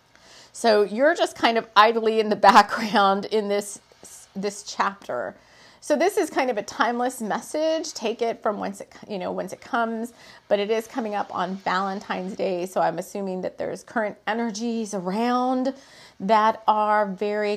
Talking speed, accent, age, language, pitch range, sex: 165 wpm, American, 30-49, English, 205-245 Hz, female